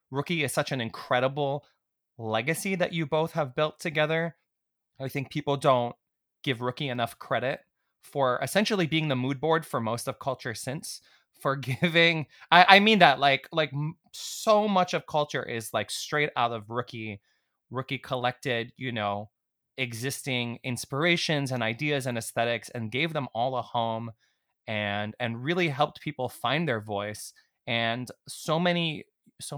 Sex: male